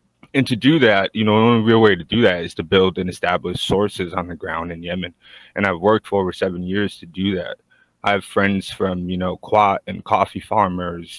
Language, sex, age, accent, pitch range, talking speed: English, male, 20-39, American, 85-110 Hz, 235 wpm